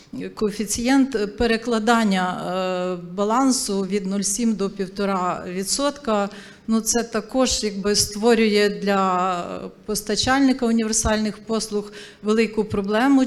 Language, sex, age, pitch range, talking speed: Ukrainian, female, 40-59, 195-220 Hz, 80 wpm